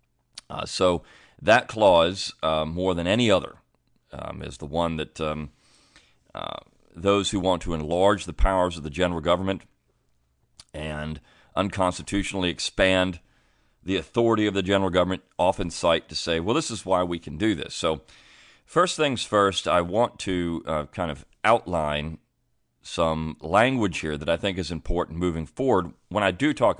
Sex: male